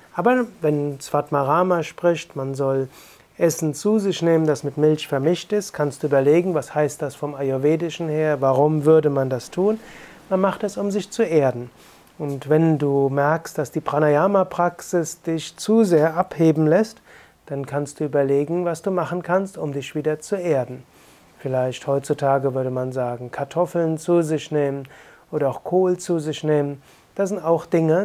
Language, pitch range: German, 145-180 Hz